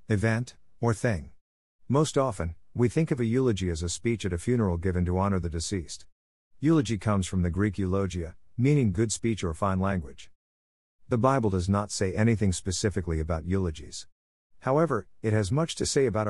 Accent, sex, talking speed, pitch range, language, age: American, male, 180 wpm, 85-120 Hz, English, 50-69